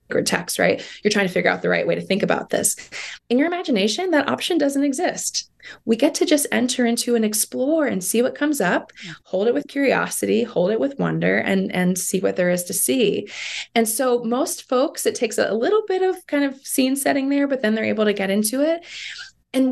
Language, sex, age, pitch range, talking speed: English, female, 20-39, 185-265 Hz, 225 wpm